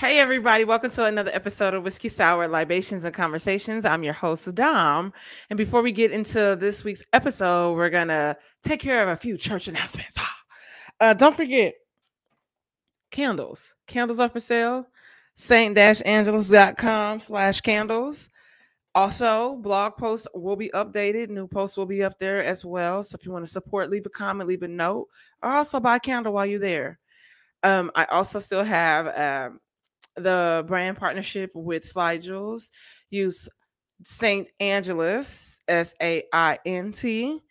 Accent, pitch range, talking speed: American, 180-225 Hz, 150 wpm